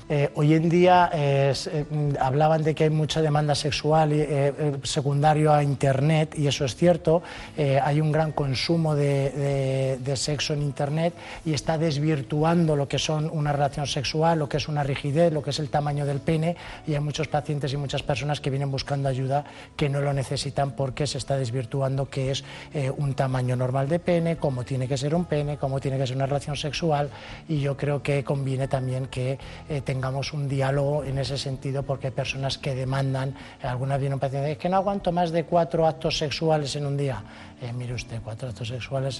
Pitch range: 135-150 Hz